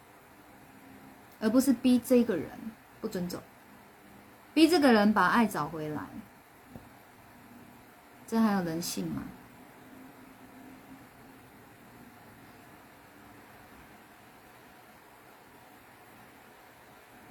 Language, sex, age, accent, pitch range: Chinese, female, 20-39, native, 175-250 Hz